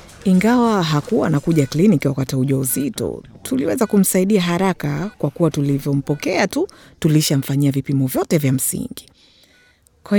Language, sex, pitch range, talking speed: Swahili, female, 145-185 Hz, 120 wpm